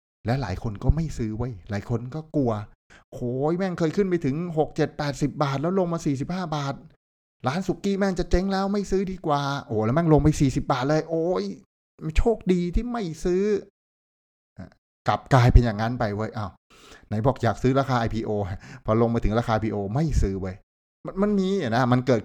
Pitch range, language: 100-135 Hz, Thai